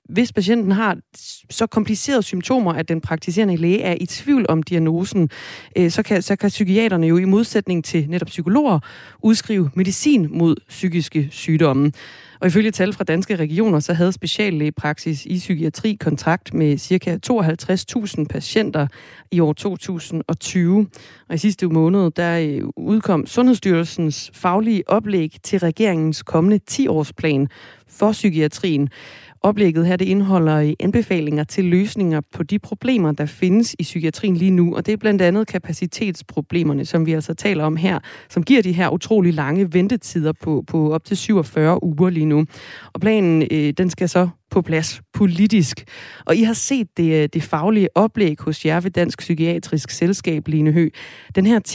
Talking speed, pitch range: 155 wpm, 160-205 Hz